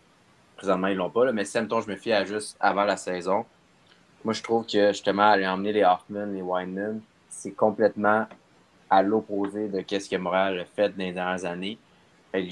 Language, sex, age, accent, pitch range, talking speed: French, male, 20-39, Canadian, 95-105 Hz, 200 wpm